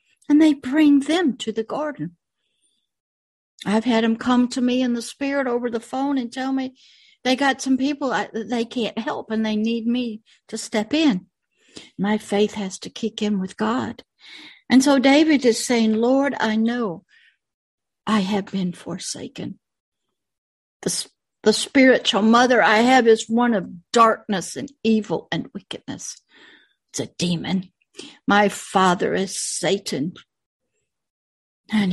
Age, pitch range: 60-79, 210-260 Hz